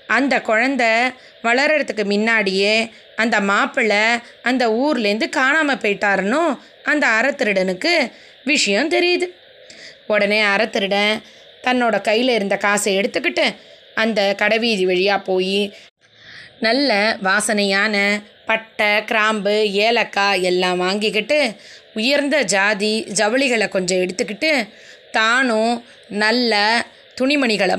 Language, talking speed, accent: Tamil, 85 wpm, native